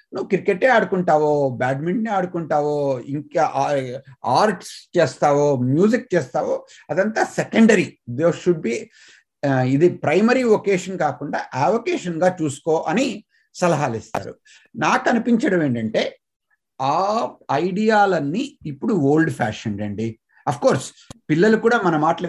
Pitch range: 145-210 Hz